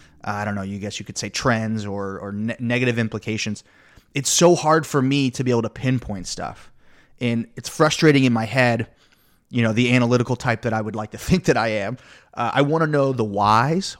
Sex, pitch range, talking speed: male, 110-135 Hz, 225 wpm